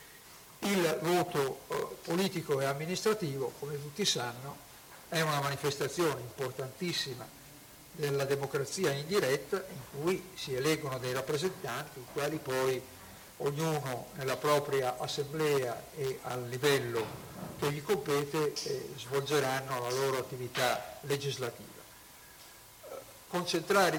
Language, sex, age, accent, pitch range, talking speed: Italian, male, 50-69, native, 130-155 Hz, 105 wpm